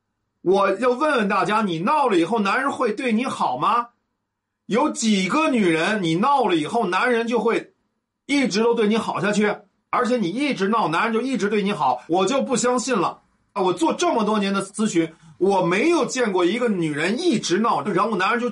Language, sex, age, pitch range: Chinese, male, 50-69, 170-240 Hz